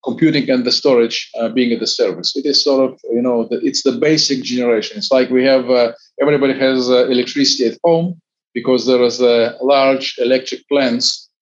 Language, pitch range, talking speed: English, 120-145 Hz, 205 wpm